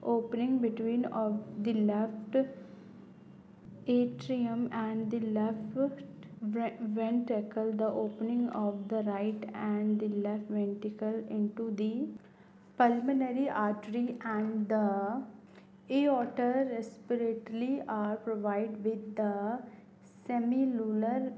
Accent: native